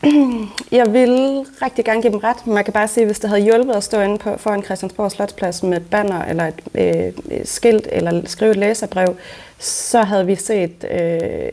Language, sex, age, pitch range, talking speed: Danish, female, 30-49, 165-200 Hz, 210 wpm